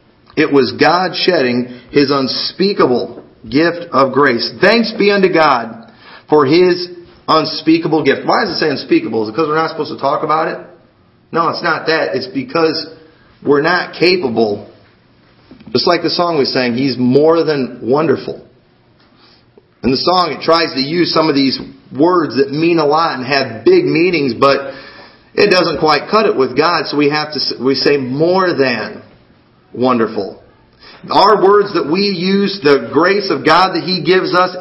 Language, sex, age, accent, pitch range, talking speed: English, male, 40-59, American, 135-180 Hz, 175 wpm